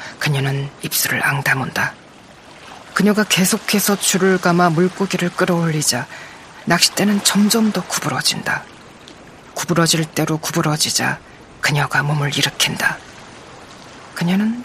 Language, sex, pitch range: Korean, female, 155-185 Hz